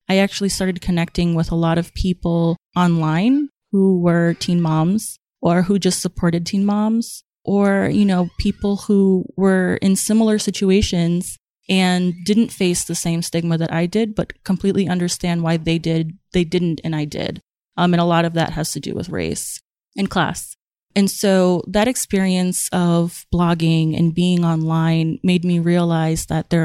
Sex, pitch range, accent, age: female, 170-195 Hz, American, 20-39